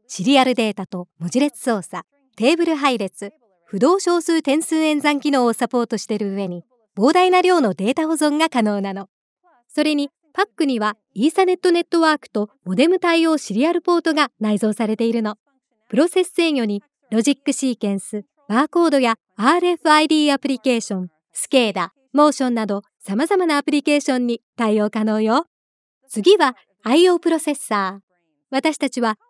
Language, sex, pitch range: English, male, 215-310 Hz